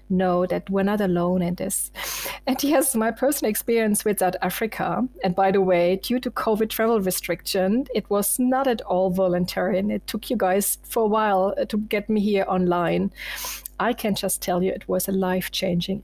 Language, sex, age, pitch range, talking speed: English, female, 40-59, 185-240 Hz, 195 wpm